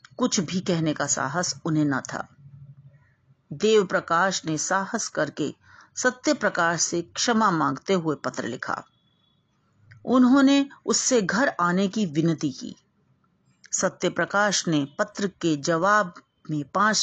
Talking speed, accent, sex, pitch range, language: 115 wpm, native, female, 155-220 Hz, Hindi